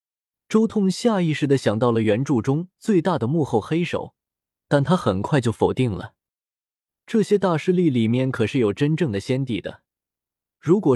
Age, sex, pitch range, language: 20-39, male, 115-170 Hz, Chinese